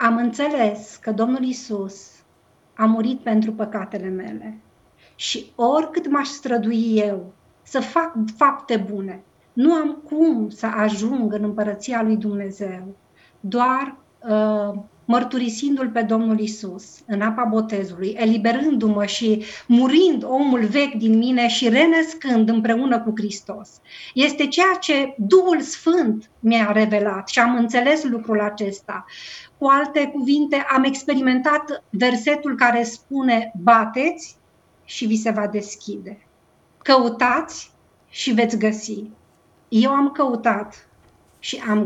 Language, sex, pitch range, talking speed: Romanian, female, 215-280 Hz, 120 wpm